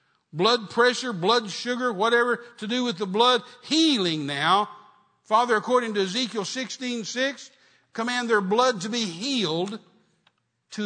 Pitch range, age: 180-240 Hz, 60-79